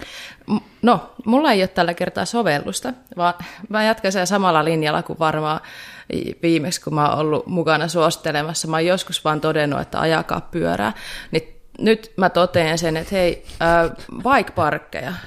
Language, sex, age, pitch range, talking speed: Finnish, female, 20-39, 160-205 Hz, 150 wpm